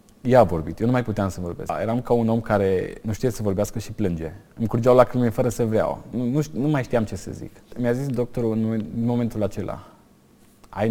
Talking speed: 220 wpm